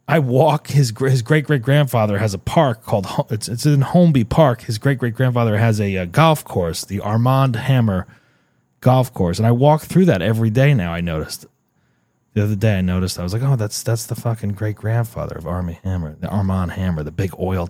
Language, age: English, 30-49